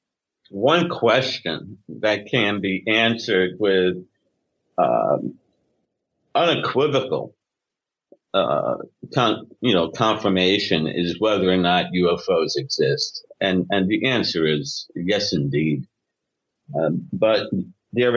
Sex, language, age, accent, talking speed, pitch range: male, English, 50-69, American, 100 wpm, 100-150 Hz